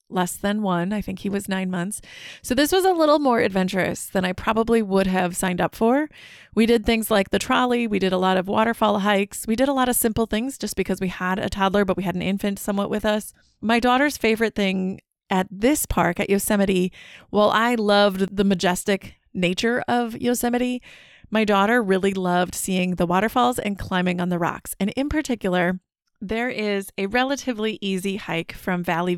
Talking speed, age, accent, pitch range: 200 wpm, 30-49, American, 185-225 Hz